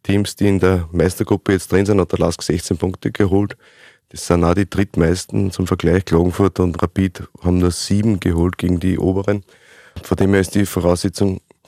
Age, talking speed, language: 30-49, 190 wpm, German